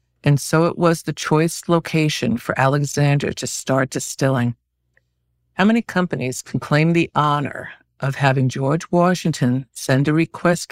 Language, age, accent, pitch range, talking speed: English, 50-69, American, 130-160 Hz, 145 wpm